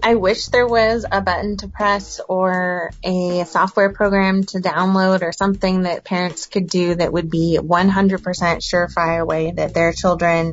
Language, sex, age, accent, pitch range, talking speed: English, female, 20-39, American, 165-190 Hz, 165 wpm